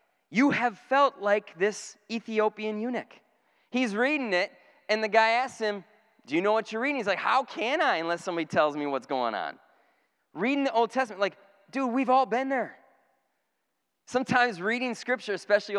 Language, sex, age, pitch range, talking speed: English, male, 30-49, 165-230 Hz, 180 wpm